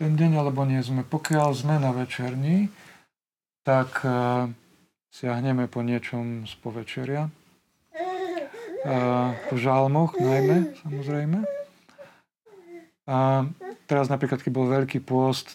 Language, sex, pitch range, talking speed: Slovak, male, 125-165 Hz, 110 wpm